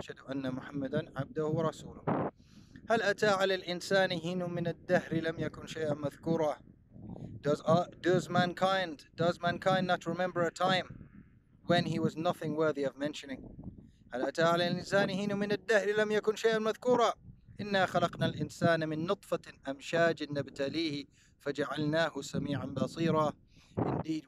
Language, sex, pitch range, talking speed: English, male, 135-170 Hz, 75 wpm